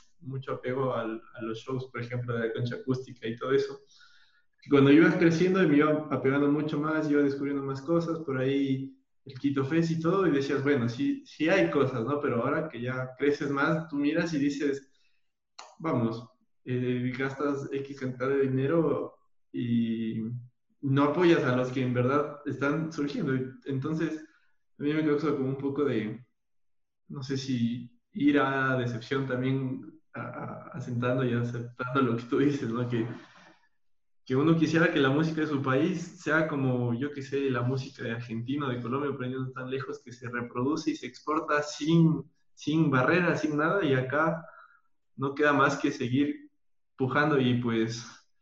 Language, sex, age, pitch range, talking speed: Spanish, male, 20-39, 125-150 Hz, 175 wpm